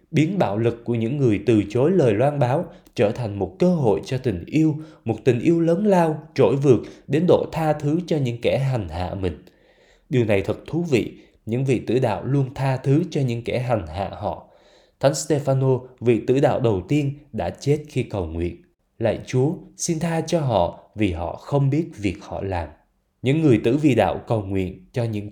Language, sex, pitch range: Vietnamese, male, 105-145 Hz